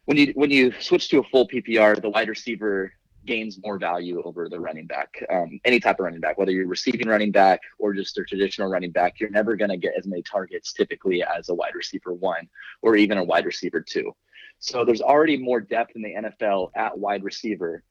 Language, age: English, 20-39